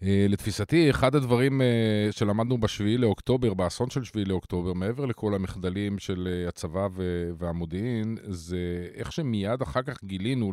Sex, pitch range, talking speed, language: male, 95-120 Hz, 125 wpm, Hebrew